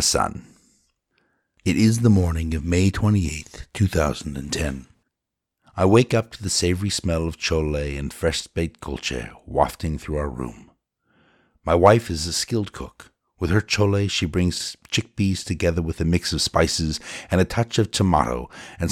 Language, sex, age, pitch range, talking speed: English, male, 60-79, 75-95 Hz, 160 wpm